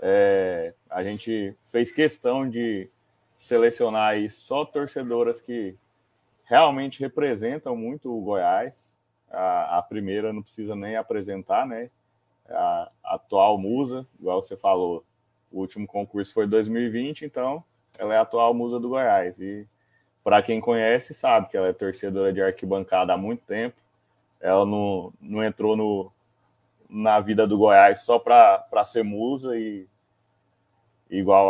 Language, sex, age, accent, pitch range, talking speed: Portuguese, male, 20-39, Brazilian, 105-125 Hz, 140 wpm